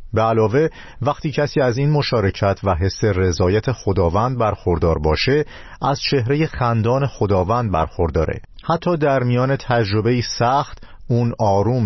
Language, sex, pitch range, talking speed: Persian, male, 90-130 Hz, 125 wpm